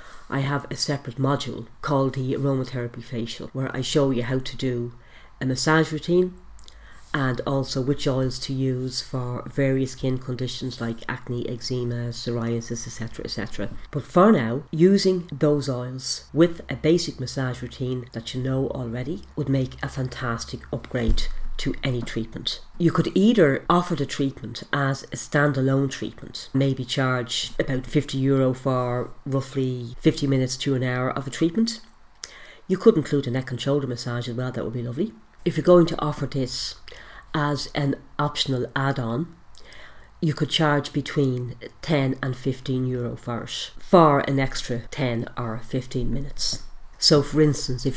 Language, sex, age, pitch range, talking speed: English, female, 40-59, 125-145 Hz, 160 wpm